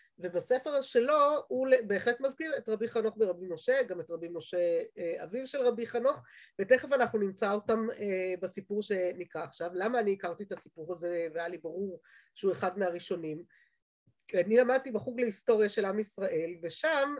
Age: 30-49